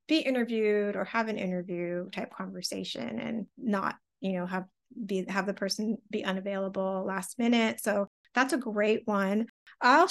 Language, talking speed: English, 160 wpm